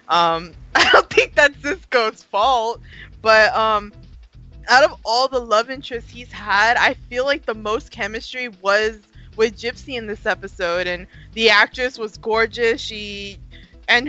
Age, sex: 20-39, female